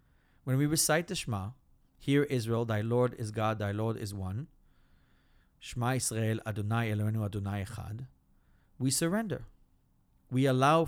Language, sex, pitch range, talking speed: English, male, 100-130 Hz, 140 wpm